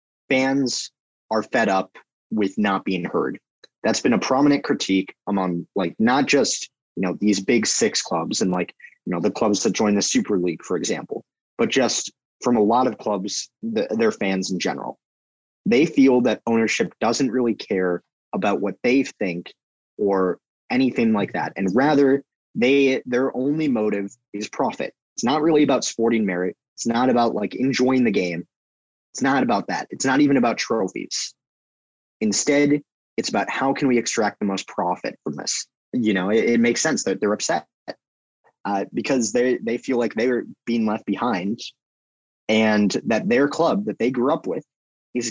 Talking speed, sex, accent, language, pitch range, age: 175 wpm, male, American, English, 100-135 Hz, 30-49